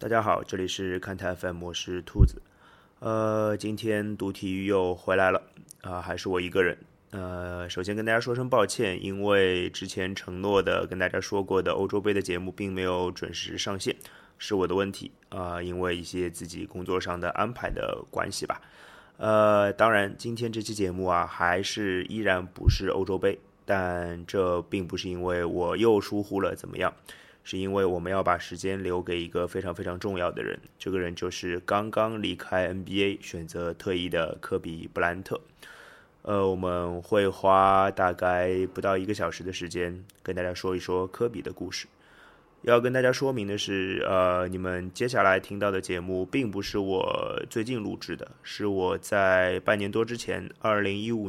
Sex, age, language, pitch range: male, 20-39, Chinese, 90-100 Hz